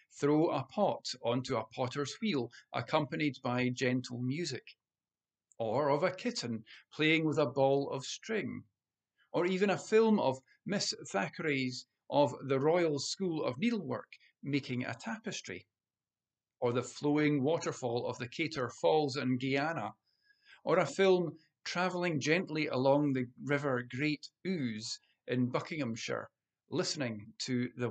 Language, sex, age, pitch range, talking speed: English, male, 50-69, 125-175 Hz, 135 wpm